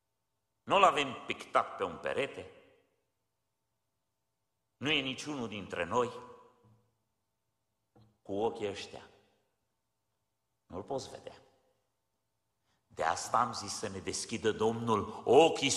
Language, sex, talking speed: Romanian, male, 100 wpm